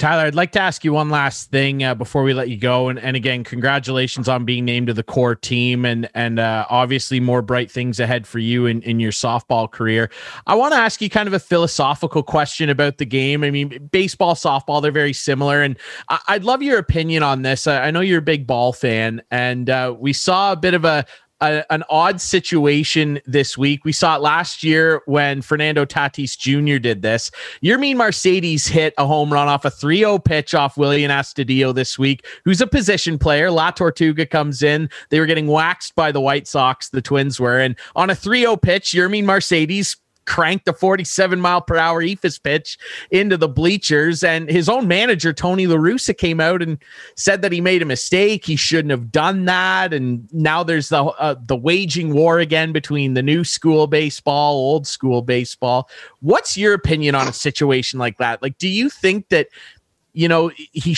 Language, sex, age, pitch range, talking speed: English, male, 20-39, 135-170 Hz, 205 wpm